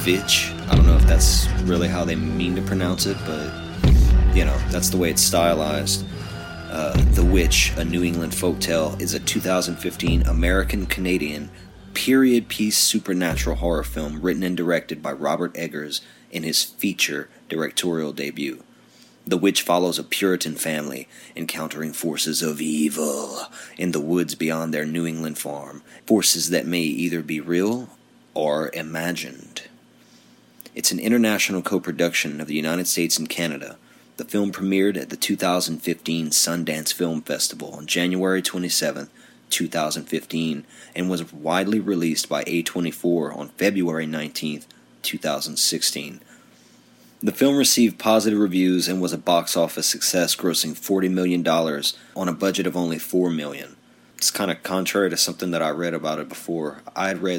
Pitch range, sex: 80-95 Hz, male